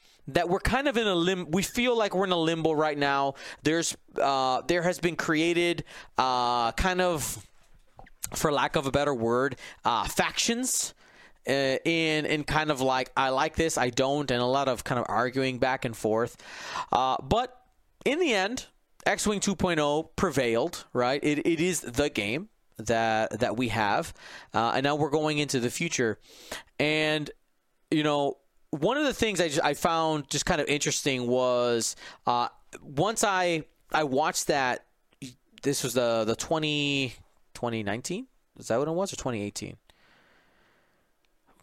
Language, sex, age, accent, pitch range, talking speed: English, male, 30-49, American, 125-170 Hz, 170 wpm